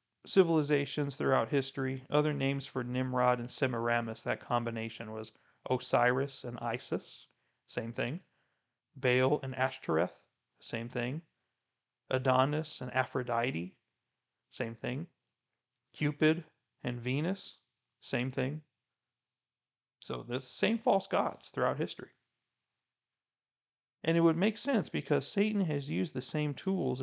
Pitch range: 120-150 Hz